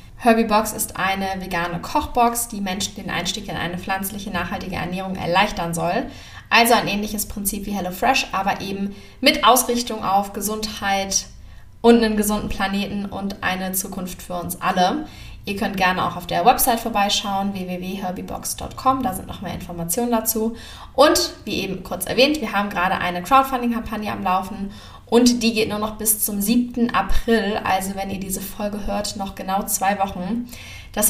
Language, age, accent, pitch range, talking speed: German, 20-39, German, 195-235 Hz, 170 wpm